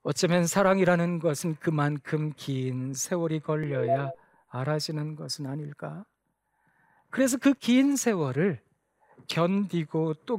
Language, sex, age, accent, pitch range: Korean, male, 40-59, native, 155-235 Hz